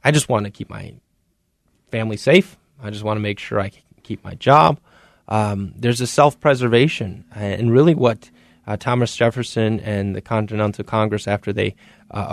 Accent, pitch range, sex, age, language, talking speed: American, 110-145 Hz, male, 20-39, English, 175 wpm